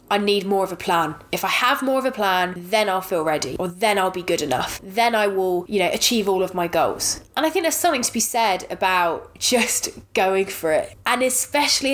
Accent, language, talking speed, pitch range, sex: British, English, 240 wpm, 185-240 Hz, female